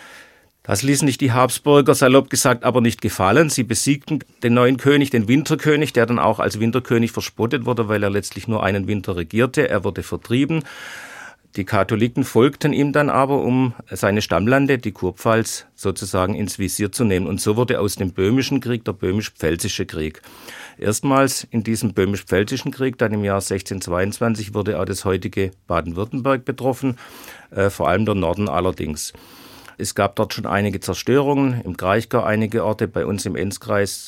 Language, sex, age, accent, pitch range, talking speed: German, male, 50-69, German, 95-130 Hz, 165 wpm